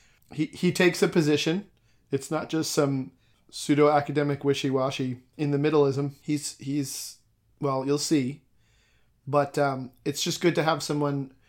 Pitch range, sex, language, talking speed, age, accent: 130-150 Hz, male, English, 145 wpm, 40-59, American